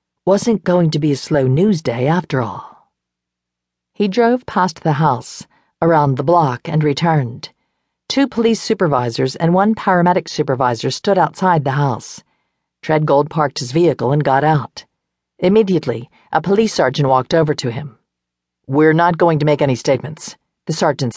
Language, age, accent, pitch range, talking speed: English, 50-69, American, 125-170 Hz, 155 wpm